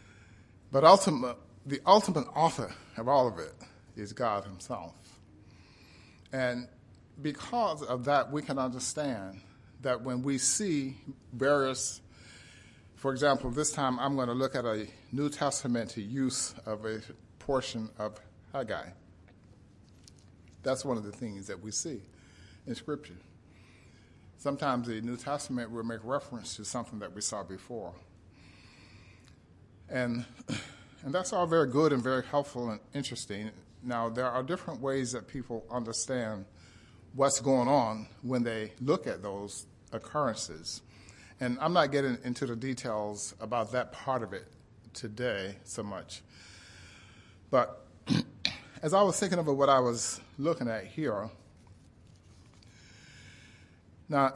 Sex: male